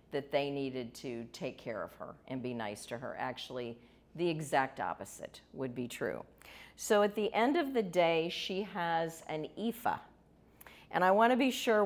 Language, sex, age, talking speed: English, female, 50-69, 180 wpm